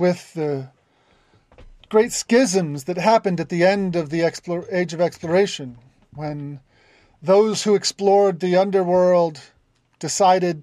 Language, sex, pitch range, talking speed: English, male, 140-190 Hz, 125 wpm